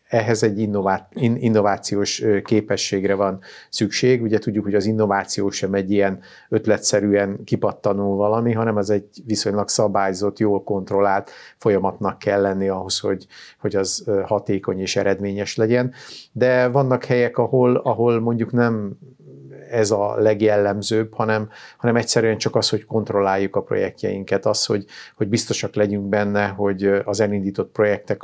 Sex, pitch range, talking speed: male, 100-110 Hz, 135 wpm